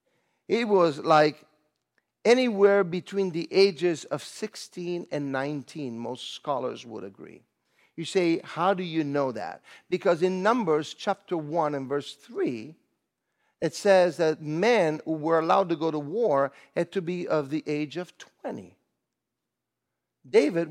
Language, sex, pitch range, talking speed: English, male, 150-230 Hz, 145 wpm